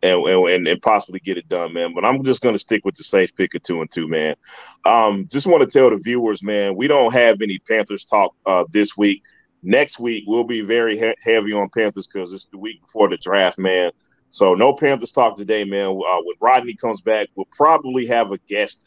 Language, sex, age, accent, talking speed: English, male, 30-49, American, 230 wpm